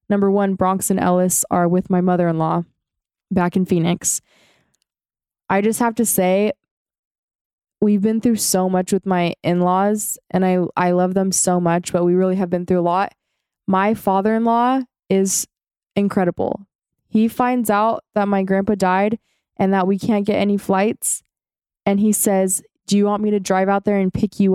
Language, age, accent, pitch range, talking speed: English, 20-39, American, 180-200 Hz, 175 wpm